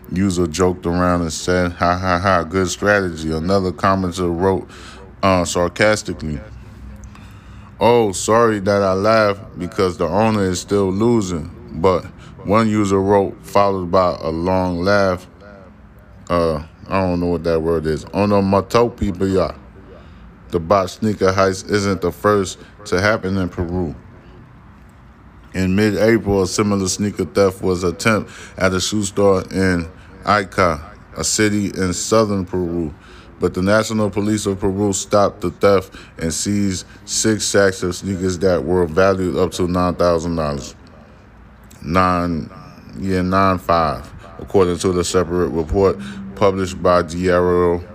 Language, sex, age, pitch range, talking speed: English, male, 10-29, 90-100 Hz, 135 wpm